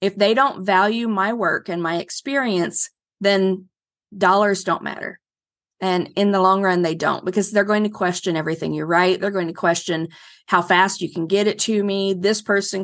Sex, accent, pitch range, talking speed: female, American, 175-205 Hz, 195 wpm